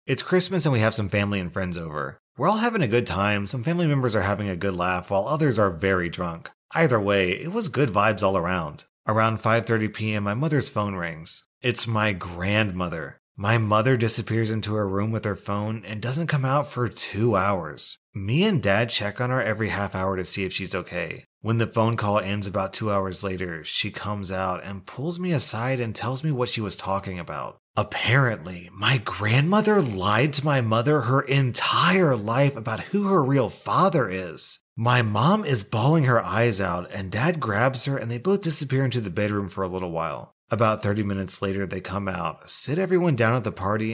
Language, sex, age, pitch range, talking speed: English, male, 30-49, 95-130 Hz, 205 wpm